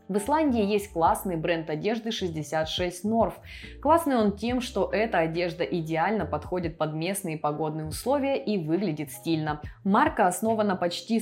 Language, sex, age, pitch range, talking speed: Russian, female, 20-39, 160-215 Hz, 140 wpm